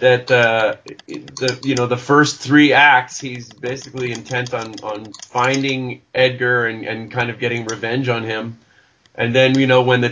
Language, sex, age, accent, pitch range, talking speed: English, male, 30-49, American, 120-140 Hz, 180 wpm